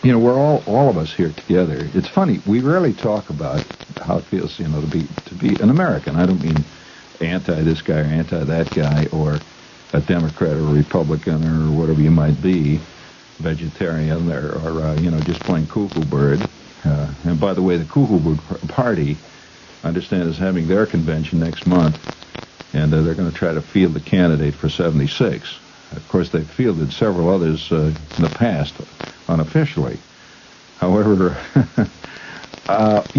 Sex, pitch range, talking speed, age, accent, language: male, 80-95 Hz, 180 wpm, 60-79, American, English